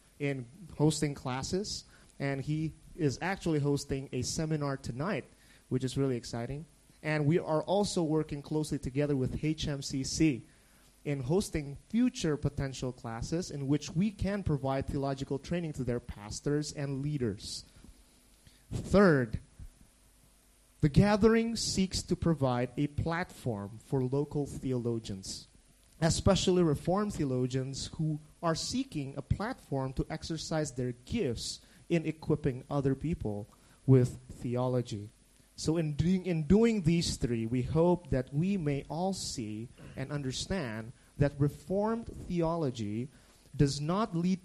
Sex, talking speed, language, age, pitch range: male, 125 wpm, English, 30-49, 130-165 Hz